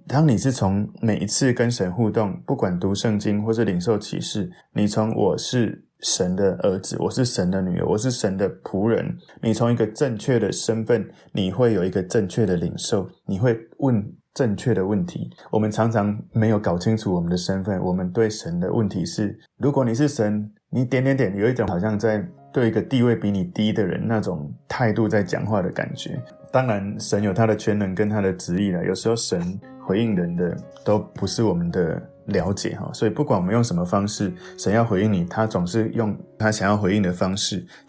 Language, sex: Chinese, male